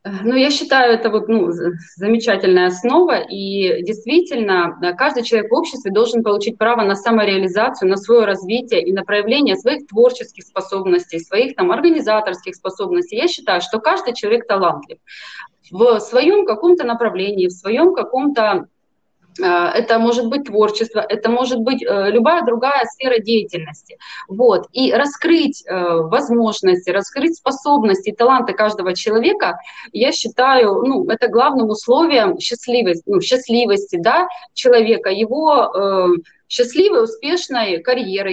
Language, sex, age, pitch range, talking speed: Russian, female, 20-39, 205-285 Hz, 125 wpm